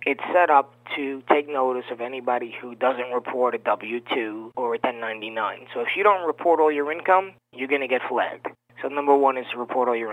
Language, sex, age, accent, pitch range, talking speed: English, male, 20-39, American, 115-140 Hz, 220 wpm